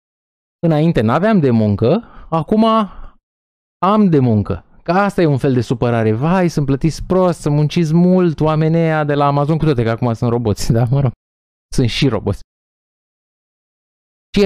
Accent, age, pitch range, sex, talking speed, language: native, 20-39, 115-180 Hz, male, 165 wpm, Romanian